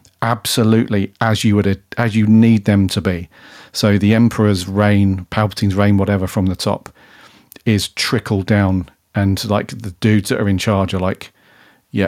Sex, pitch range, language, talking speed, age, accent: male, 95-110 Hz, English, 170 wpm, 40-59, British